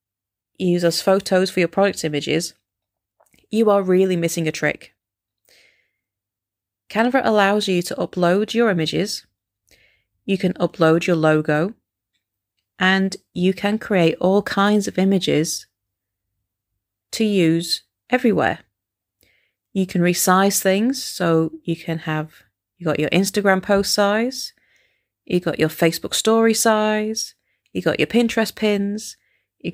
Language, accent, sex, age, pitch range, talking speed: English, British, female, 30-49, 150-200 Hz, 125 wpm